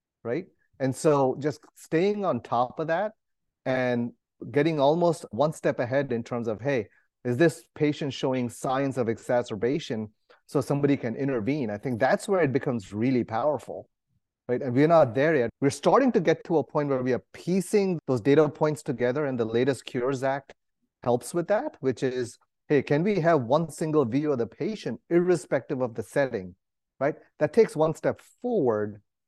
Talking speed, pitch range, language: 180 wpm, 120-155 Hz, English